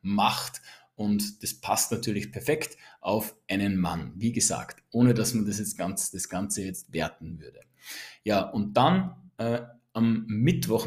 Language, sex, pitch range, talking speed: German, male, 105-130 Hz, 155 wpm